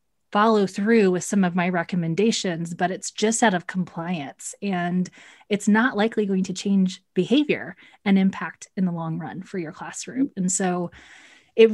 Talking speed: 170 wpm